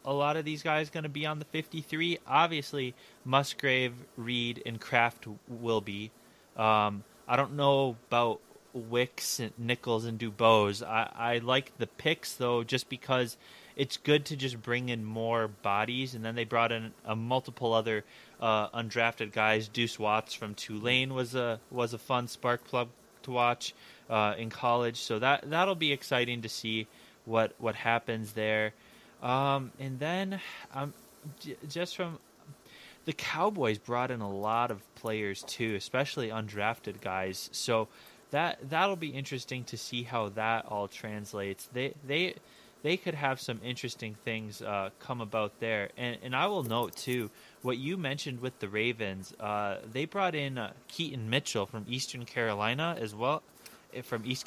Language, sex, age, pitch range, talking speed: English, male, 20-39, 110-140 Hz, 165 wpm